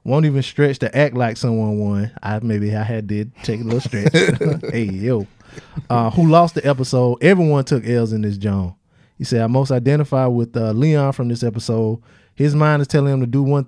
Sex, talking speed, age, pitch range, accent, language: male, 210 wpm, 20-39, 115-140 Hz, American, English